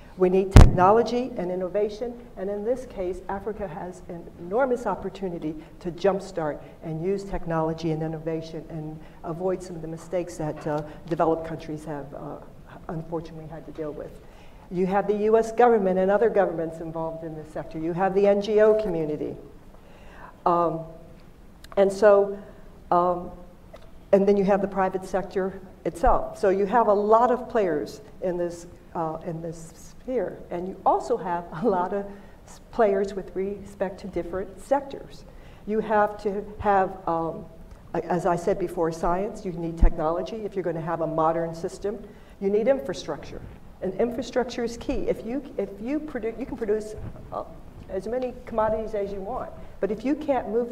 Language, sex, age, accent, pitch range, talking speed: English, female, 60-79, American, 170-215 Hz, 165 wpm